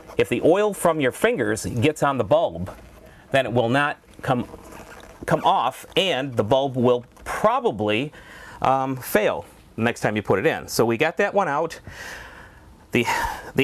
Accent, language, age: American, English, 30-49